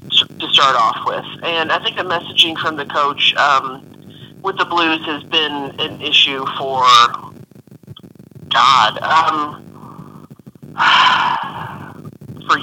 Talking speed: 115 wpm